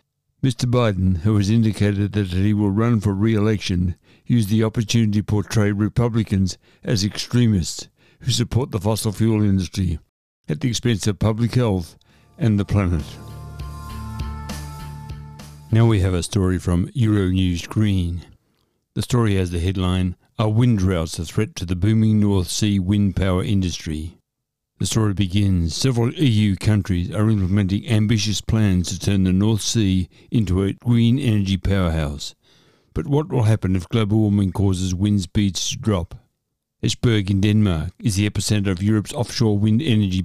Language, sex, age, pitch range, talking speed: English, male, 60-79, 95-115 Hz, 155 wpm